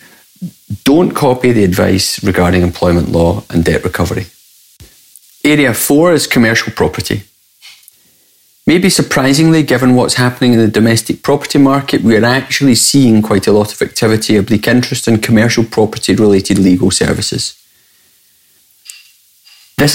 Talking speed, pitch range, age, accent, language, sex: 130 wpm, 105-135 Hz, 30-49, British, English, male